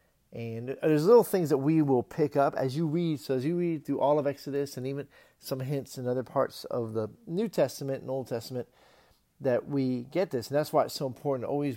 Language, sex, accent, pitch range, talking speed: English, male, American, 120-150 Hz, 235 wpm